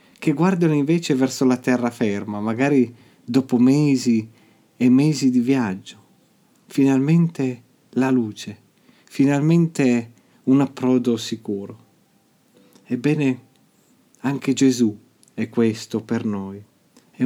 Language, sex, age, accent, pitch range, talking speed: Italian, male, 40-59, native, 115-135 Hz, 95 wpm